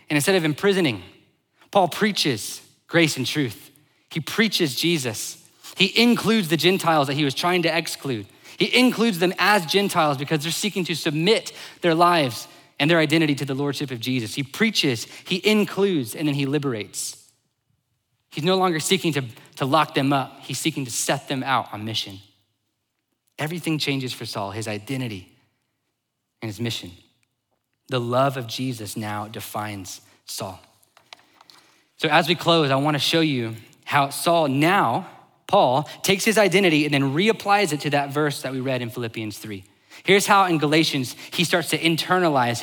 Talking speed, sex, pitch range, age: 170 wpm, male, 125-170 Hz, 20-39